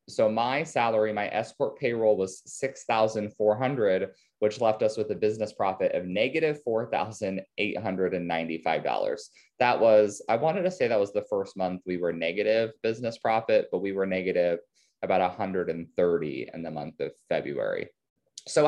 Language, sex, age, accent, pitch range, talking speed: English, male, 20-39, American, 95-160 Hz, 150 wpm